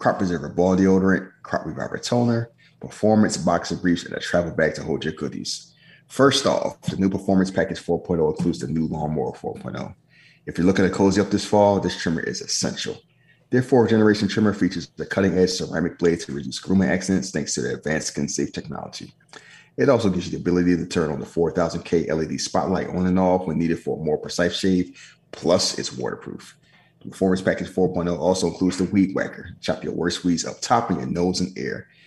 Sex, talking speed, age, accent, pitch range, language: male, 195 wpm, 30-49, American, 85-95 Hz, English